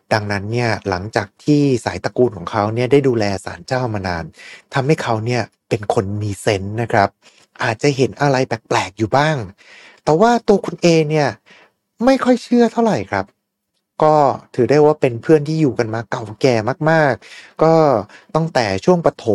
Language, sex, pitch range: Thai, male, 105-155 Hz